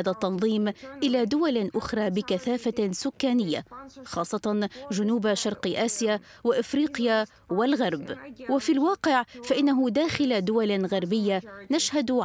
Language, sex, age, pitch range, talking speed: Arabic, female, 20-39, 195-240 Hz, 95 wpm